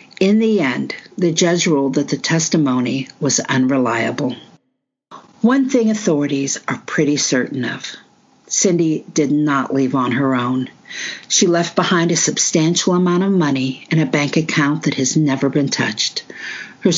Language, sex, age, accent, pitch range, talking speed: English, female, 50-69, American, 145-185 Hz, 150 wpm